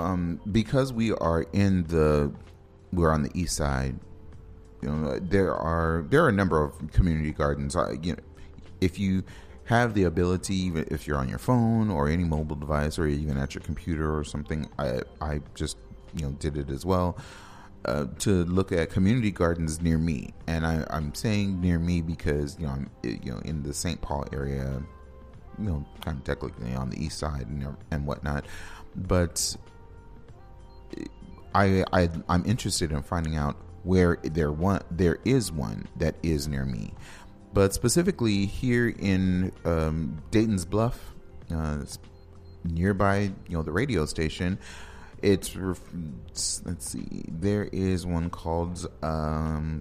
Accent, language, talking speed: American, English, 160 wpm